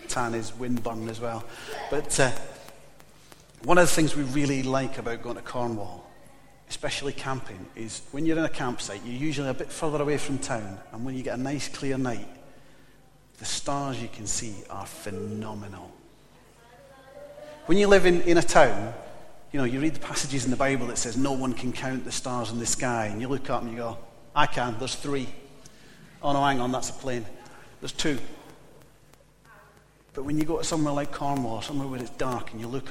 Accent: British